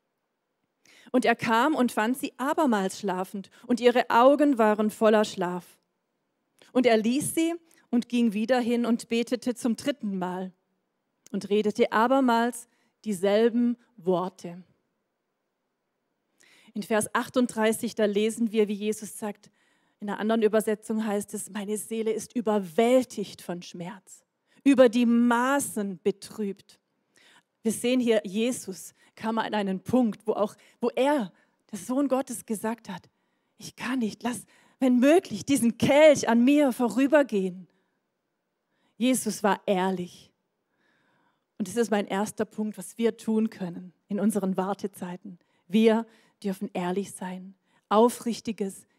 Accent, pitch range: German, 200-240 Hz